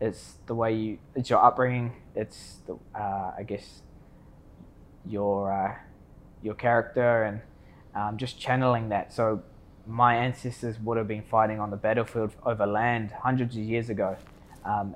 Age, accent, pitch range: 20-39, Australian, 105-115 Hz